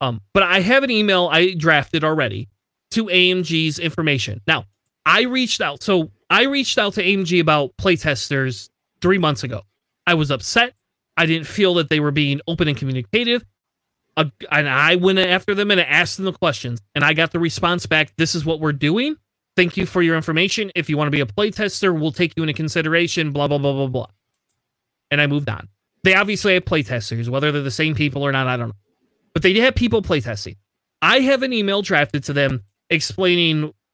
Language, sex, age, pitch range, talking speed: English, male, 30-49, 145-185 Hz, 205 wpm